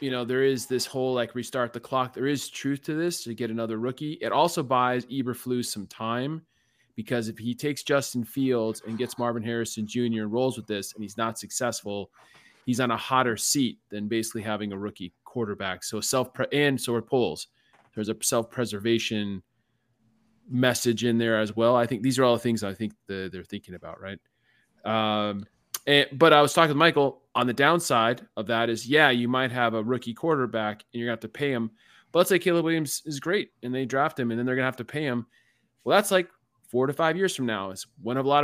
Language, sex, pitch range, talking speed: English, male, 110-130 Hz, 230 wpm